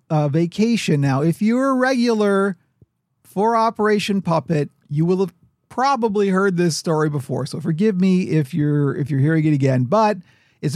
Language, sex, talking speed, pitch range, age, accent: English, male, 165 wpm, 130-180 Hz, 40-59, American